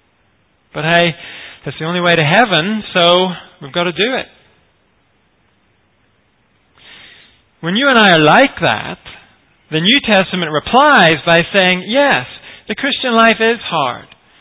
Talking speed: 135 wpm